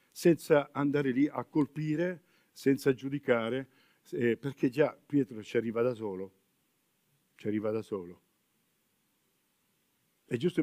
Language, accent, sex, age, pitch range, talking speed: Italian, native, male, 50-69, 120-160 Hz, 120 wpm